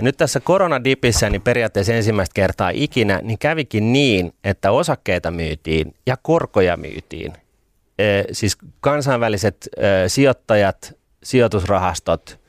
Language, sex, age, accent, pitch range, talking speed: Finnish, male, 30-49, native, 95-120 Hz, 100 wpm